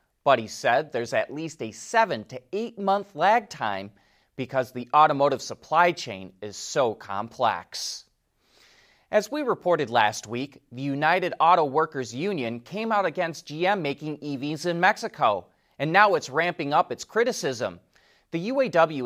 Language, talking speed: English, 150 wpm